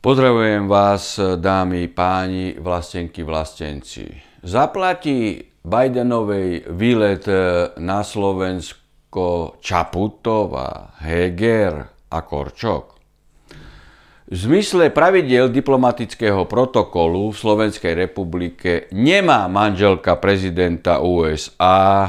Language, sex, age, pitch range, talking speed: Slovak, male, 60-79, 95-155 Hz, 75 wpm